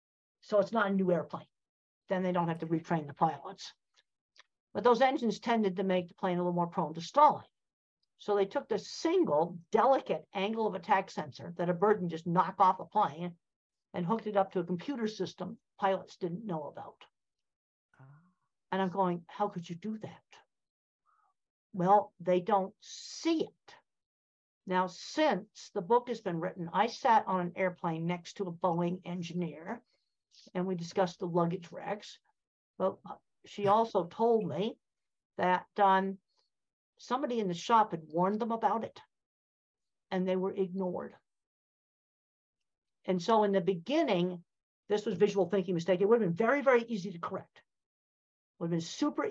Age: 60-79